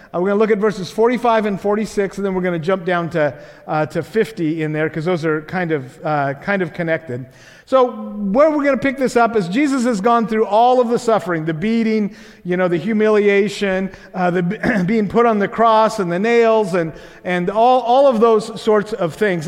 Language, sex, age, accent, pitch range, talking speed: English, male, 50-69, American, 165-225 Hz, 230 wpm